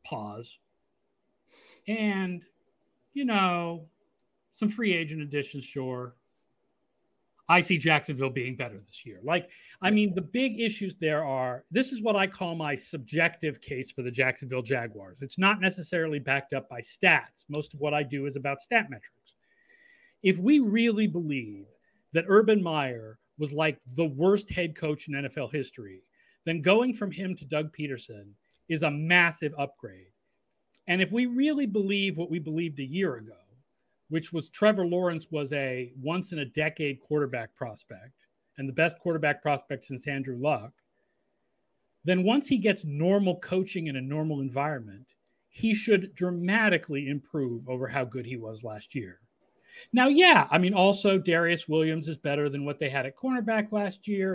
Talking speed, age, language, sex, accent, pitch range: 165 wpm, 40-59, English, male, American, 135-190 Hz